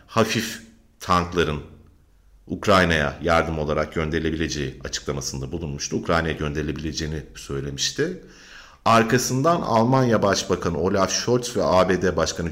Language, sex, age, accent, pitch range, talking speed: Turkish, male, 50-69, native, 75-110 Hz, 90 wpm